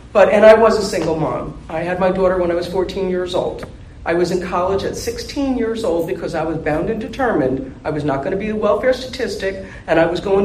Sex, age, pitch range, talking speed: female, 50-69, 165-255 Hz, 245 wpm